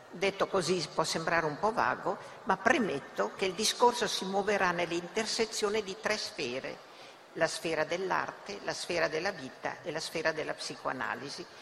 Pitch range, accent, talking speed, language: 170-220 Hz, native, 155 wpm, Italian